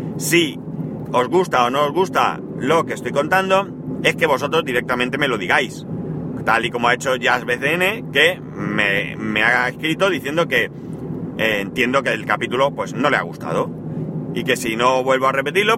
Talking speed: 185 wpm